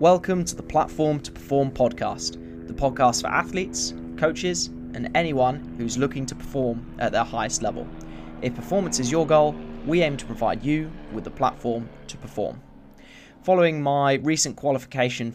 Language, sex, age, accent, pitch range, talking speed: English, male, 20-39, British, 115-140 Hz, 160 wpm